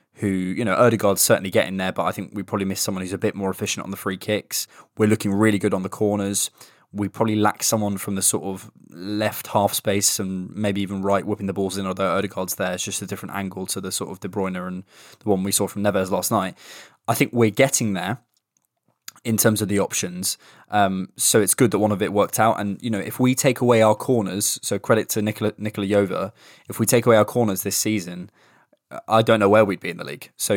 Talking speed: 245 wpm